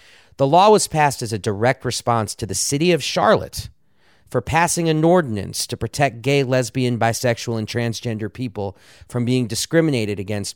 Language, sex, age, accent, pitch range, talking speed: English, male, 40-59, American, 115-145 Hz, 165 wpm